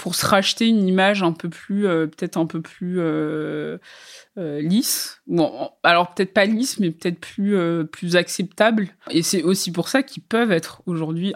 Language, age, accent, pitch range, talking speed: French, 20-39, French, 155-185 Hz, 190 wpm